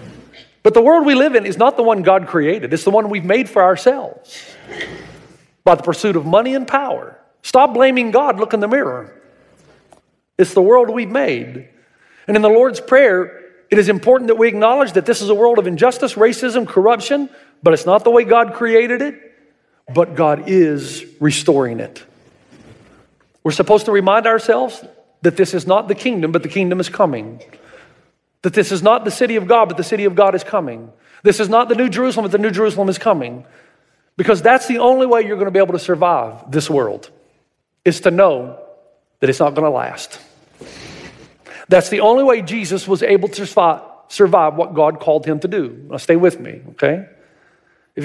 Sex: male